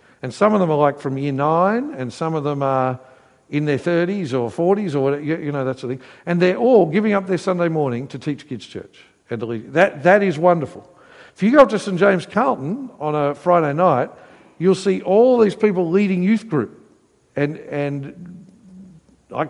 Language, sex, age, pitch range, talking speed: English, male, 60-79, 130-180 Hz, 220 wpm